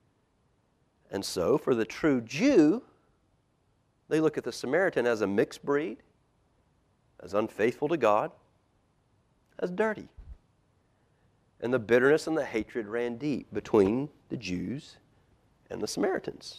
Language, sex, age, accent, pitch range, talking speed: English, male, 40-59, American, 120-180 Hz, 125 wpm